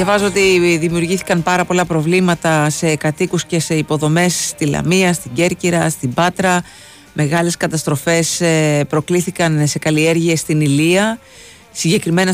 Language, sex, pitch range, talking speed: Greek, female, 140-180 Hz, 120 wpm